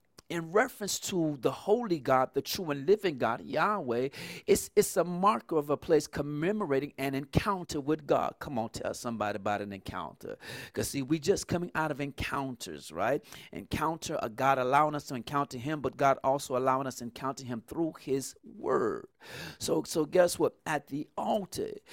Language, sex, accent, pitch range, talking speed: English, male, American, 130-175 Hz, 180 wpm